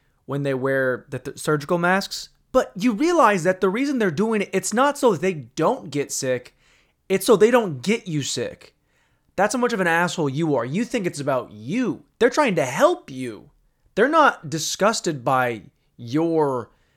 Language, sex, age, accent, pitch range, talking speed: English, male, 20-39, American, 120-175 Hz, 185 wpm